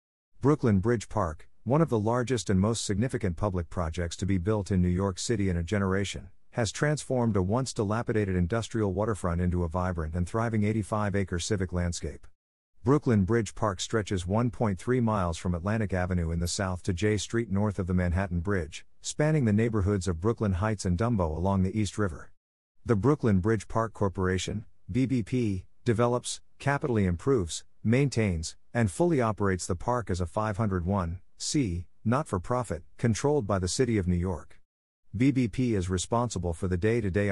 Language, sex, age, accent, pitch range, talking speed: English, male, 50-69, American, 90-115 Hz, 165 wpm